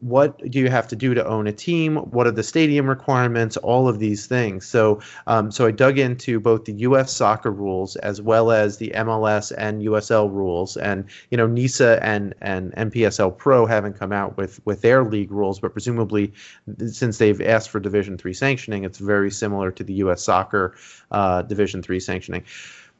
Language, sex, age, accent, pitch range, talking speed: English, male, 30-49, American, 100-120 Hz, 195 wpm